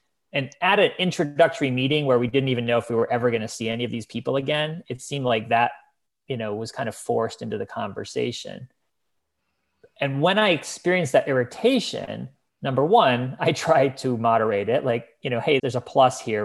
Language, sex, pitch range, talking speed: English, male, 115-140 Hz, 205 wpm